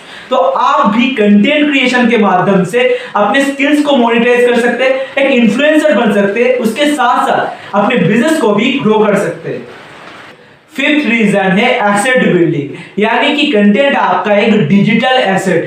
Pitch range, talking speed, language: 205-255 Hz, 165 wpm, Hindi